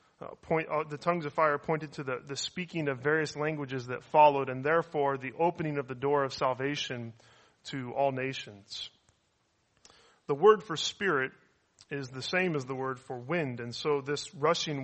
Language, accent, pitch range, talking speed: English, American, 135-155 Hz, 180 wpm